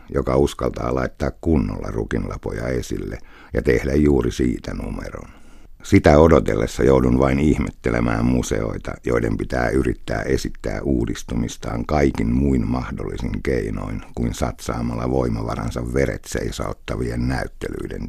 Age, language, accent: 60-79, Finnish, native